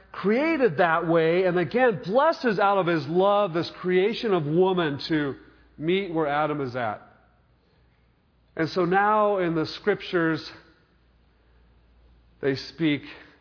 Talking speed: 125 wpm